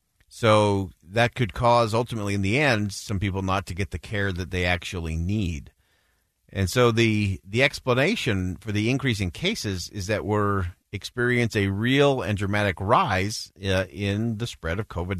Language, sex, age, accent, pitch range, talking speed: English, male, 50-69, American, 90-115 Hz, 170 wpm